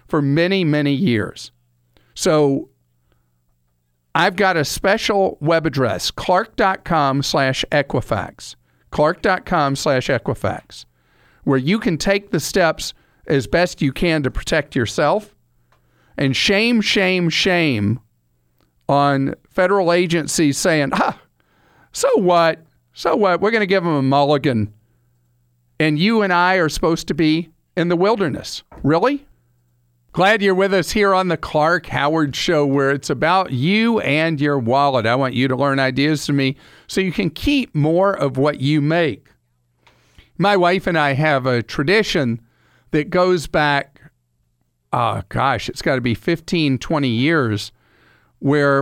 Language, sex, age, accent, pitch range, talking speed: English, male, 50-69, American, 120-180 Hz, 145 wpm